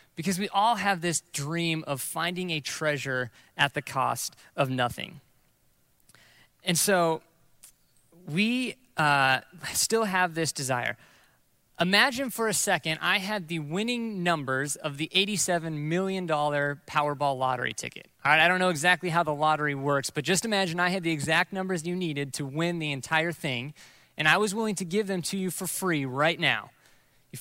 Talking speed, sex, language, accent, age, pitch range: 170 wpm, male, English, American, 20-39, 140-185 Hz